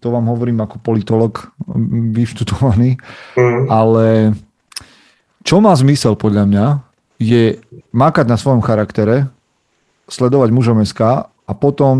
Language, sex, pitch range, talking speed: Slovak, male, 110-125 Hz, 110 wpm